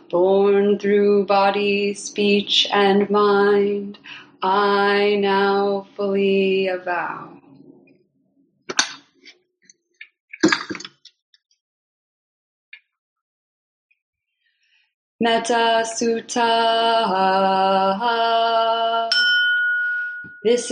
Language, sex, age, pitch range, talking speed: English, female, 20-39, 230-235 Hz, 40 wpm